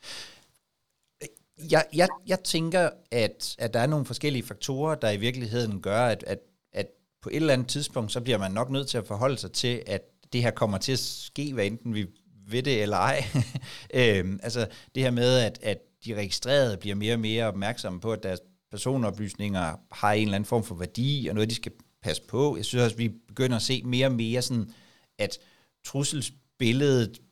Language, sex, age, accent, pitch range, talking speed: Danish, male, 60-79, native, 105-135 Hz, 195 wpm